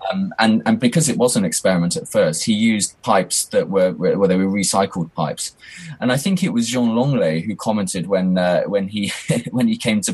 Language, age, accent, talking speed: English, 20-39, British, 225 wpm